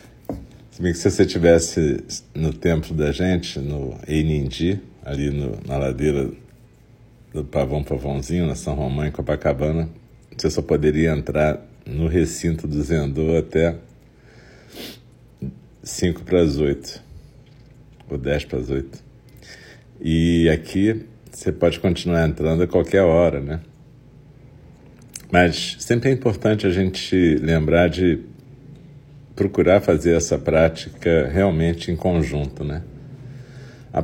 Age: 50-69